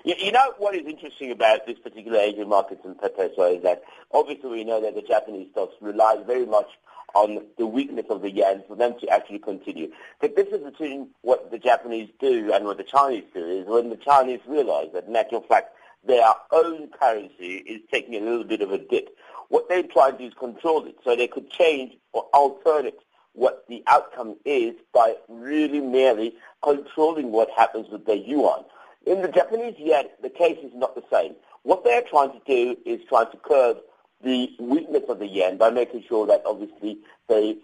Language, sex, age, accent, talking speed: English, male, 50-69, British, 200 wpm